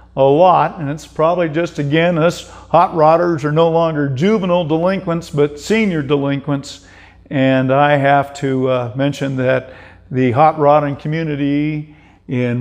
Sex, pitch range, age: male, 130-155 Hz, 50-69